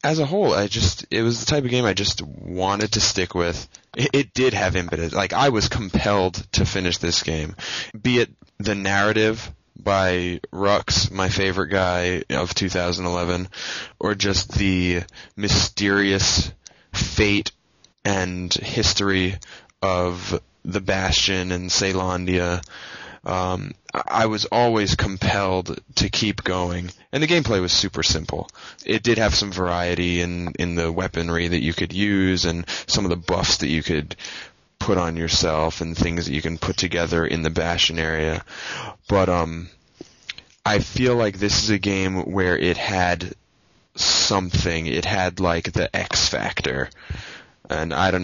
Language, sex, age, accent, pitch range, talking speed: English, male, 10-29, American, 85-100 Hz, 155 wpm